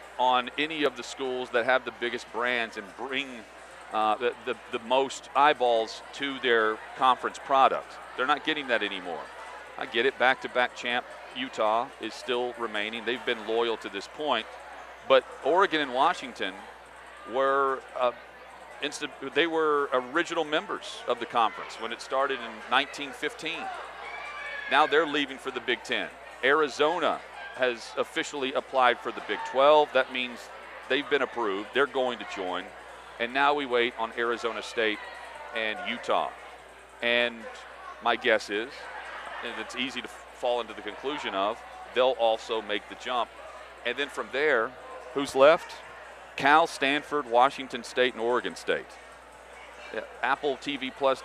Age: 40-59